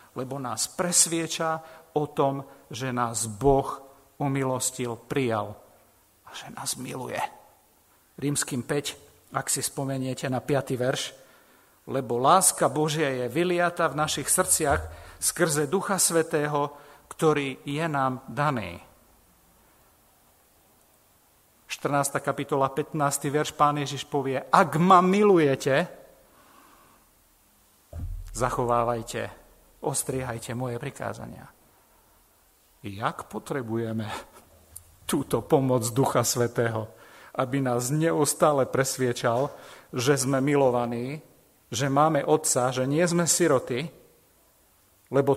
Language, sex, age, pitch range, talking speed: Slovak, male, 50-69, 125-155 Hz, 95 wpm